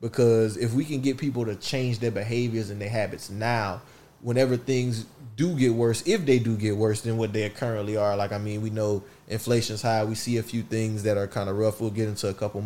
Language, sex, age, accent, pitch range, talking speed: English, male, 20-39, American, 105-125 Hz, 240 wpm